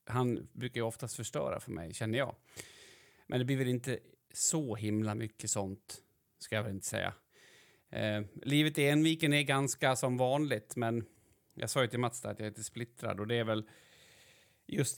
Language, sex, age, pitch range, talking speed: Swedish, male, 30-49, 110-145 Hz, 195 wpm